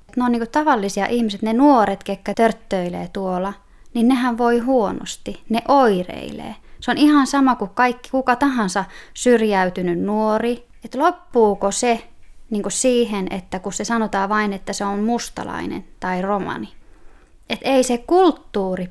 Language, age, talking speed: Finnish, 20-39, 145 wpm